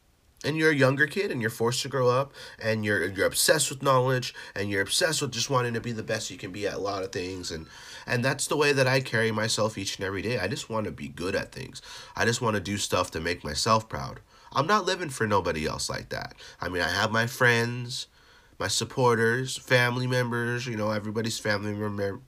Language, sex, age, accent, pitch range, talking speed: English, male, 30-49, American, 110-140 Hz, 240 wpm